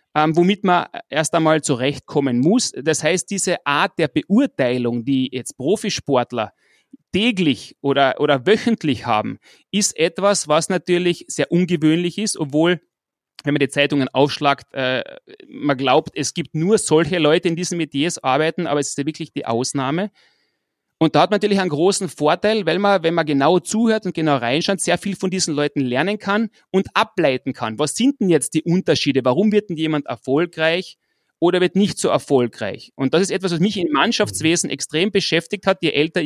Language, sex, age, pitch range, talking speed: German, male, 30-49, 145-190 Hz, 180 wpm